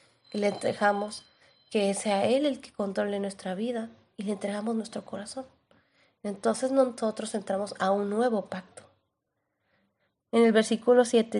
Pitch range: 200-245 Hz